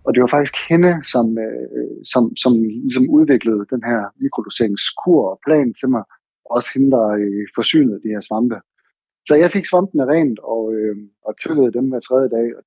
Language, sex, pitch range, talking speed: Danish, male, 115-145 Hz, 185 wpm